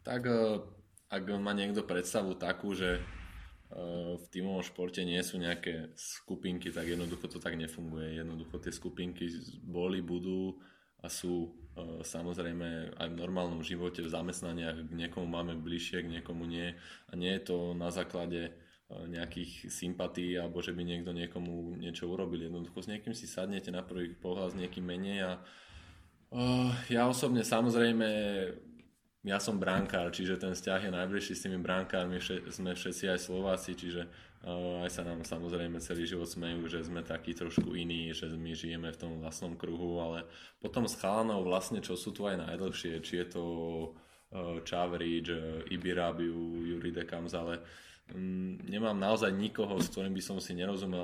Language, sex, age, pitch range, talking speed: Slovak, male, 20-39, 85-90 Hz, 160 wpm